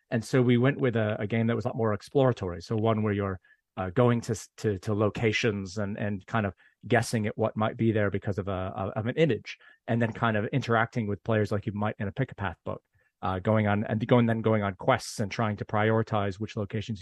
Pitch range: 100-115 Hz